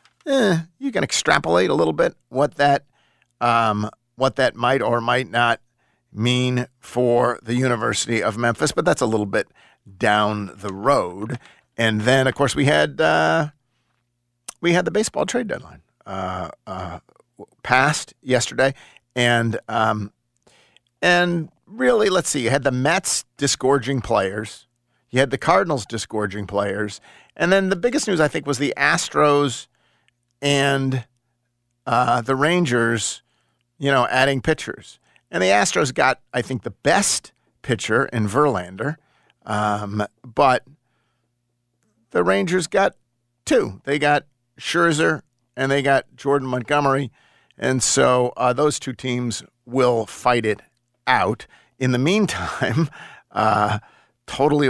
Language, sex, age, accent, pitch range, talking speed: English, male, 50-69, American, 115-140 Hz, 135 wpm